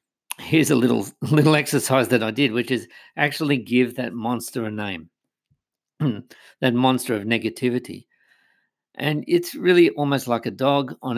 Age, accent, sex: 50-69, Australian, male